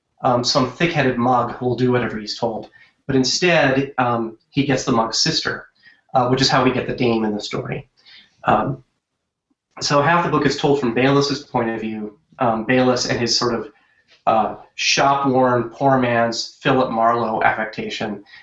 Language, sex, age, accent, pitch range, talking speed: English, male, 30-49, American, 115-140 Hz, 175 wpm